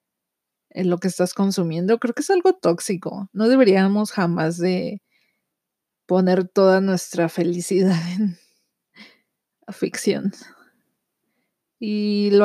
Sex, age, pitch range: female, 30-49, 185-240 Hz